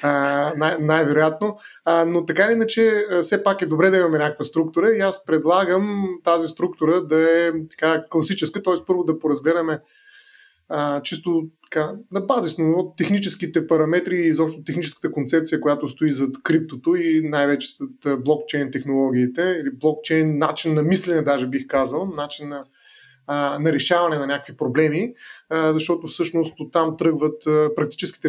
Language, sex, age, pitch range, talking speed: Bulgarian, male, 20-39, 145-180 Hz, 145 wpm